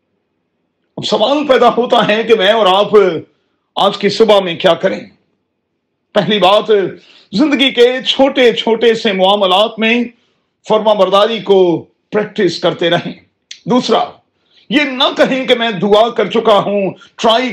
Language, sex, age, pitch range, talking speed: Urdu, male, 40-59, 175-225 Hz, 135 wpm